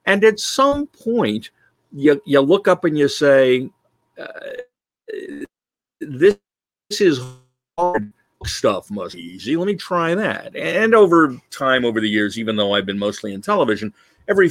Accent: American